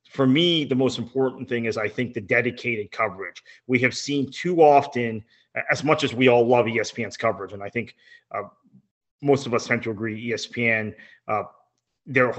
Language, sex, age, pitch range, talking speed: English, male, 30-49, 115-140 Hz, 185 wpm